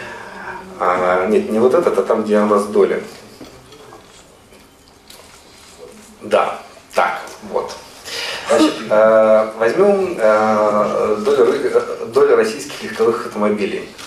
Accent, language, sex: native, Russian, male